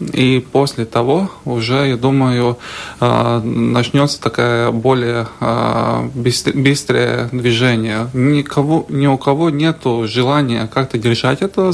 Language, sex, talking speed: Russian, male, 100 wpm